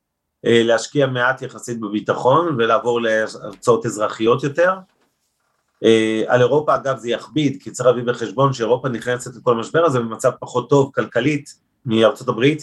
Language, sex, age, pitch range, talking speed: Hebrew, male, 30-49, 110-130 Hz, 135 wpm